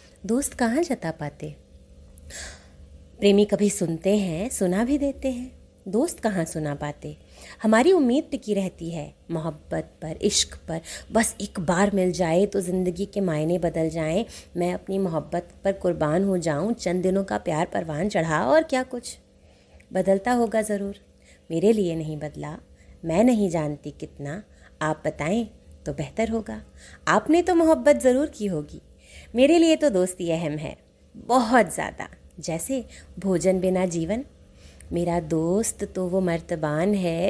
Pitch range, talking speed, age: 155-225 Hz, 150 wpm, 30-49